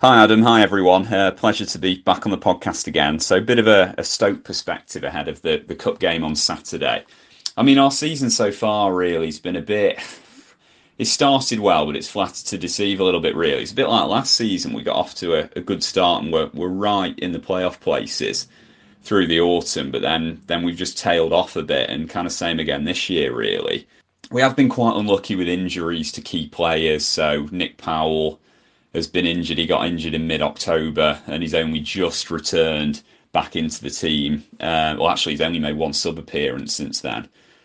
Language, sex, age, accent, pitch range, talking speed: English, male, 30-49, British, 80-100 Hz, 215 wpm